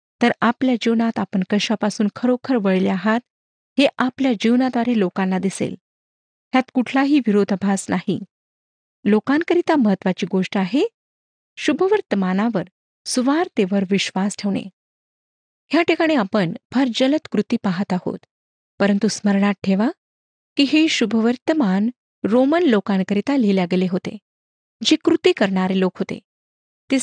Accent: native